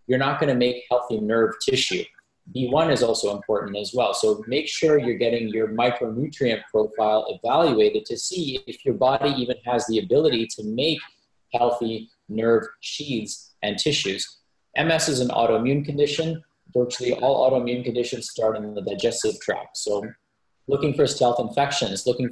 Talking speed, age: 160 wpm, 30-49